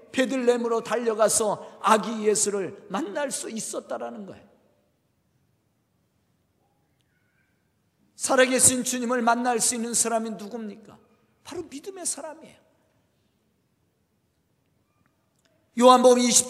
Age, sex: 40-59, male